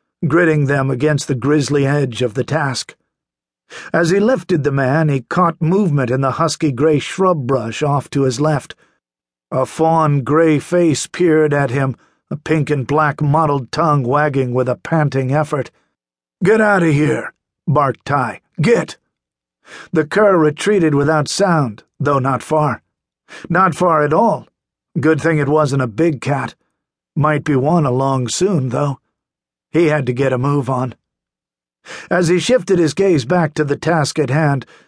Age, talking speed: 50-69, 165 wpm